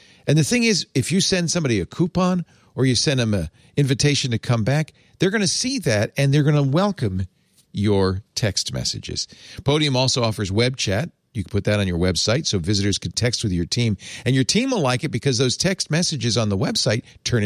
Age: 50-69